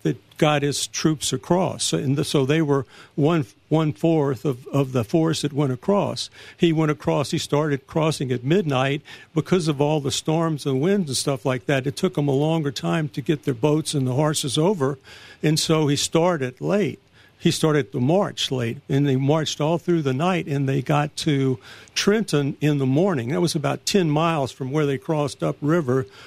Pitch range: 135-165 Hz